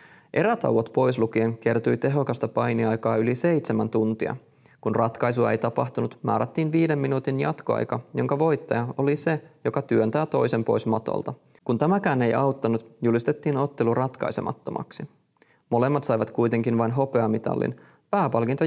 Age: 30-49